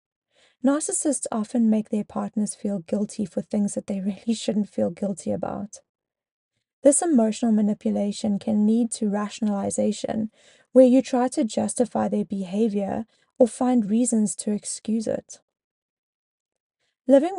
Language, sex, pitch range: English, female, 205-255 Hz